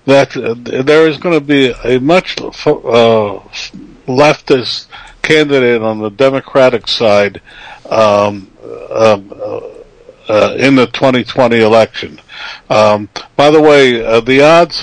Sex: male